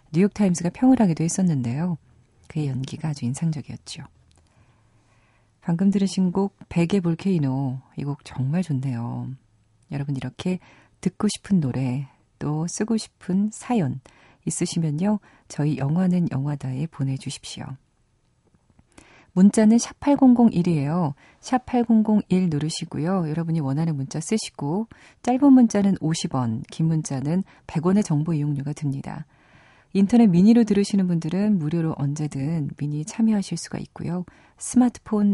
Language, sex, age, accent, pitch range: Korean, female, 40-59, native, 135-190 Hz